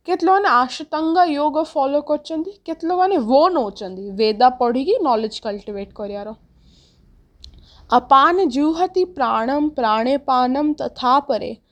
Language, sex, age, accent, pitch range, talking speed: English, female, 20-39, Indian, 225-300 Hz, 80 wpm